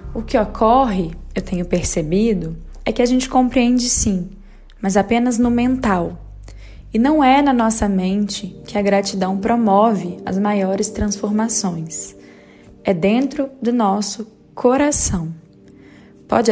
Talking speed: 125 wpm